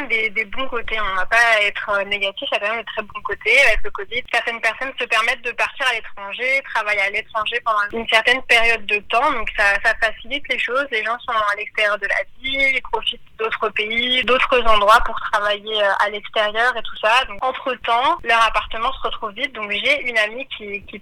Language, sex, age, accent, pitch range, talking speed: French, female, 20-39, French, 210-250 Hz, 230 wpm